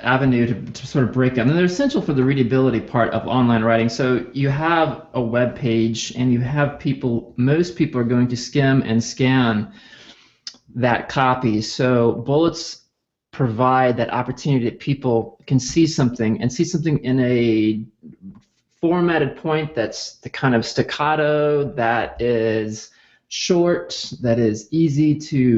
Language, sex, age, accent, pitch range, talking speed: English, male, 30-49, American, 115-145 Hz, 155 wpm